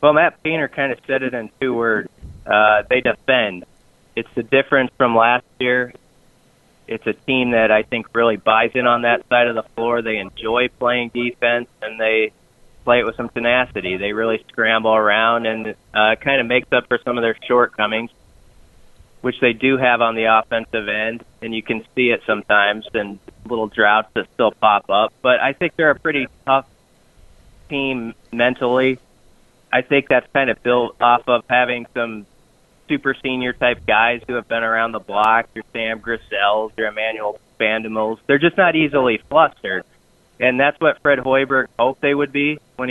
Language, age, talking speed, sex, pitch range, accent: English, 30-49, 180 wpm, male, 115-130 Hz, American